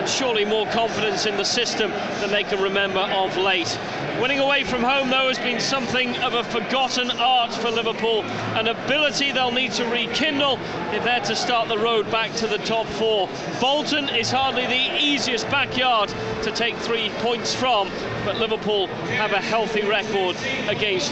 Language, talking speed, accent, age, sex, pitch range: English, 175 wpm, British, 40-59, male, 215-265 Hz